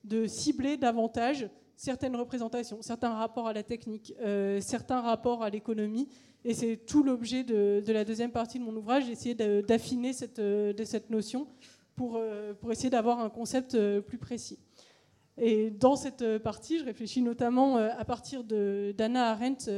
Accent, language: French, French